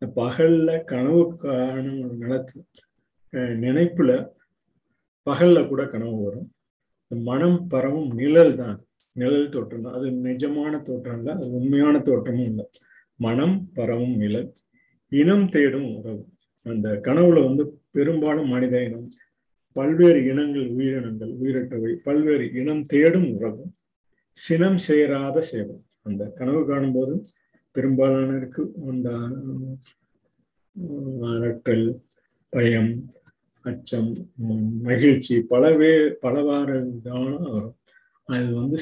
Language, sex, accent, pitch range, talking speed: Tamil, male, native, 120-150 Hz, 90 wpm